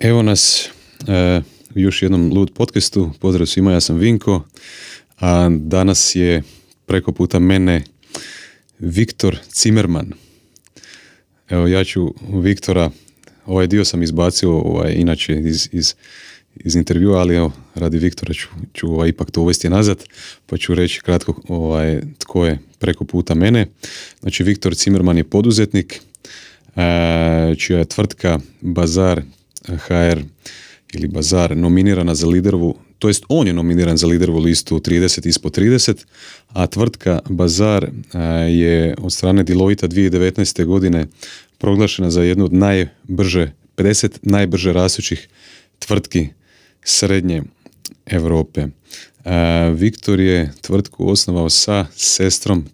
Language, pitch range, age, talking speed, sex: Croatian, 85-95 Hz, 30-49, 125 wpm, male